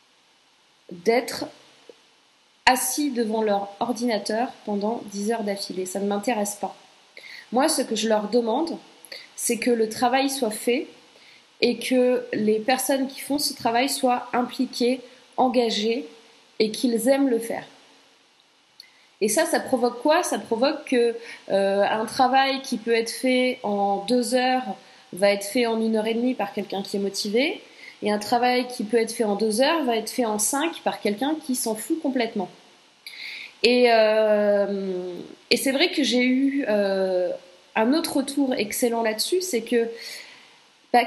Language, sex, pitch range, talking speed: French, female, 215-265 Hz, 160 wpm